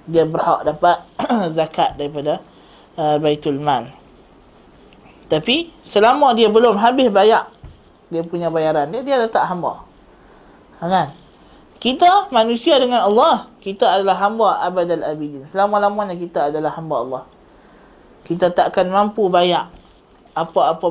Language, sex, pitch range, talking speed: Malay, male, 175-235 Hz, 120 wpm